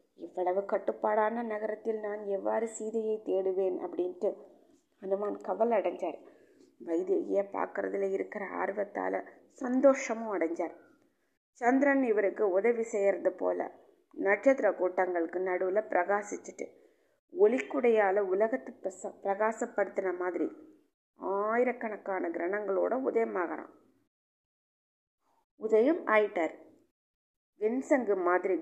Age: 20-39